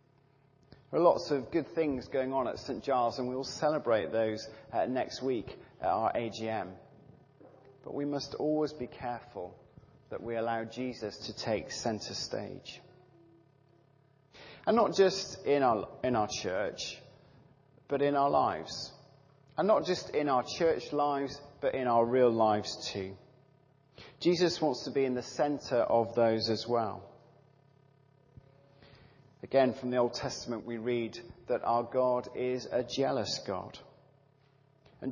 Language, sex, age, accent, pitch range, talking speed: English, male, 40-59, British, 125-140 Hz, 145 wpm